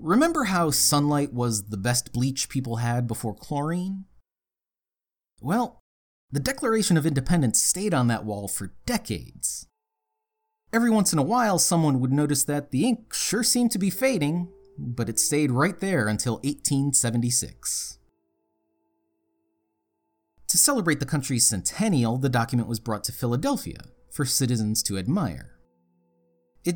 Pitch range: 110-165 Hz